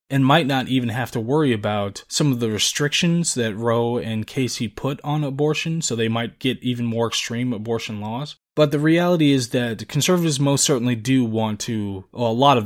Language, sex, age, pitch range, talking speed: English, male, 20-39, 110-135 Hz, 205 wpm